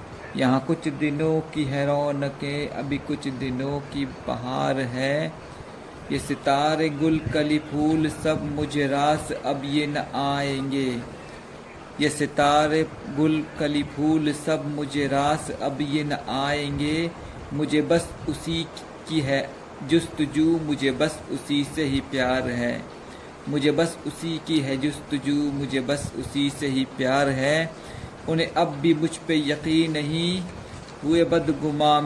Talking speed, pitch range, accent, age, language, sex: 135 wpm, 140-160 Hz, native, 50-69, Hindi, male